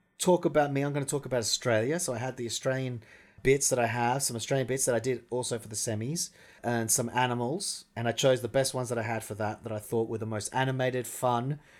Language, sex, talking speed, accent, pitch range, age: English, male, 255 wpm, Australian, 115-145 Hz, 30-49